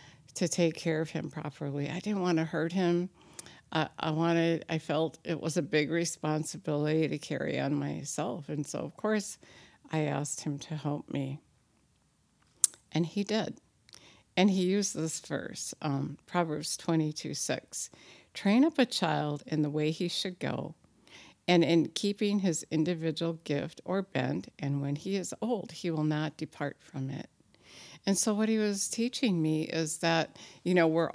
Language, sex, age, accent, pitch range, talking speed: English, female, 60-79, American, 150-180 Hz, 170 wpm